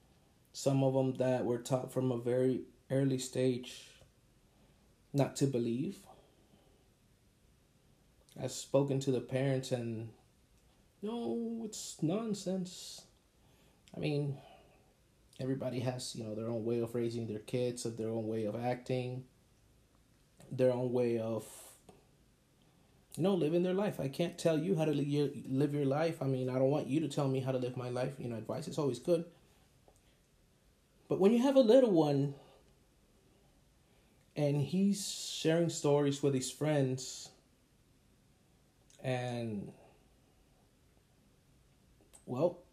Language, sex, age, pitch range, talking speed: English, male, 30-49, 125-165 Hz, 135 wpm